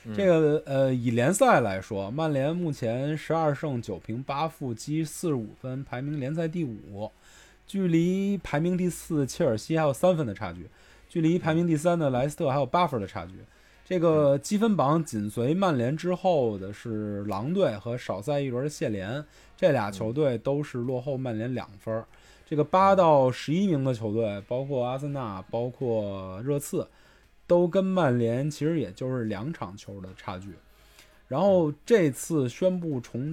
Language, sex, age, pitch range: Chinese, male, 20-39, 115-160 Hz